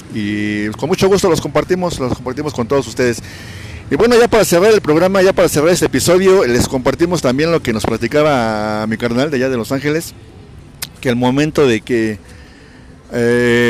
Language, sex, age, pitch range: Spanish, male, 50-69, 115-150 Hz